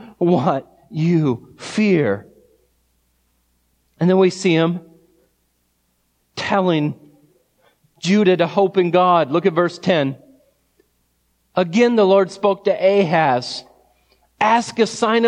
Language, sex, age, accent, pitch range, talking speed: English, male, 40-59, American, 145-225 Hz, 105 wpm